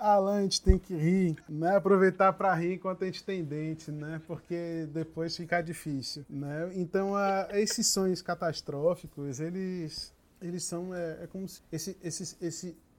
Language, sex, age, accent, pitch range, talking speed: Portuguese, male, 20-39, Brazilian, 145-180 Hz, 170 wpm